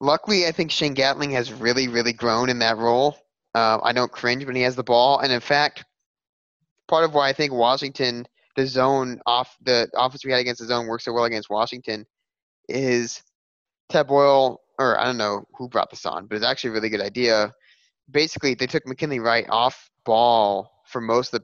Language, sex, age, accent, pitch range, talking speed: English, male, 20-39, American, 115-140 Hz, 205 wpm